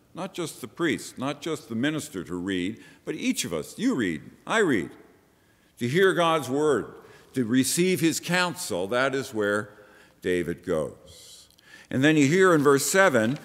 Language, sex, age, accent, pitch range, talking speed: English, male, 50-69, American, 100-135 Hz, 170 wpm